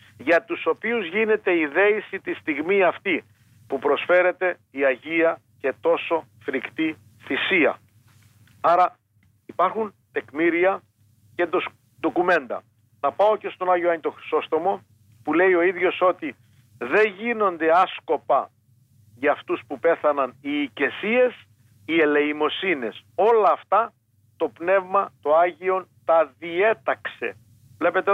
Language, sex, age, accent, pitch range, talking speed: Greek, male, 50-69, native, 115-185 Hz, 115 wpm